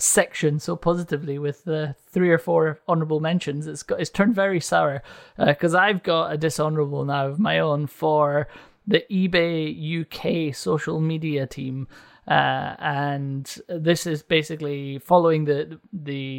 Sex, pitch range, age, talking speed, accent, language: male, 140-165 Hz, 30-49, 150 wpm, British, English